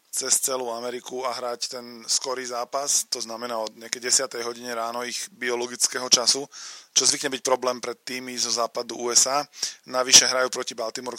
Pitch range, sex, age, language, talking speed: 120-135 Hz, male, 20-39, Slovak, 165 wpm